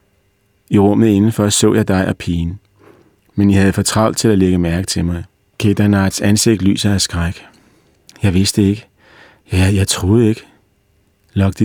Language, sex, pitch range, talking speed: Danish, male, 95-105 Hz, 160 wpm